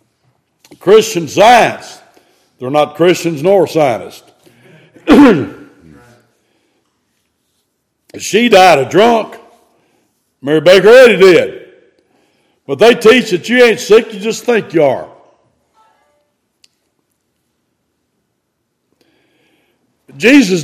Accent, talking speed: American, 80 wpm